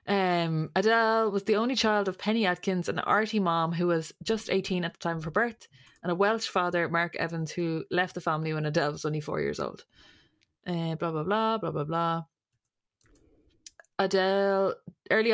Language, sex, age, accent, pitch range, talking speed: English, female, 20-39, Irish, 165-190 Hz, 185 wpm